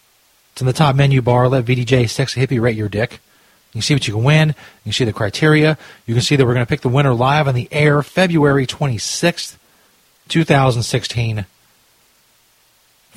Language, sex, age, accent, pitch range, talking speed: English, male, 40-59, American, 115-155 Hz, 195 wpm